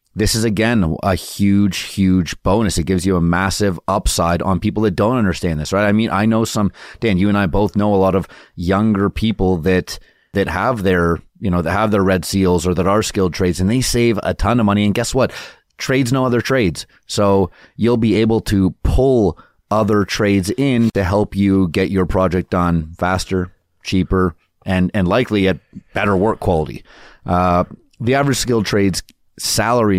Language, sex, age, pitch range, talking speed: English, male, 30-49, 90-110 Hz, 195 wpm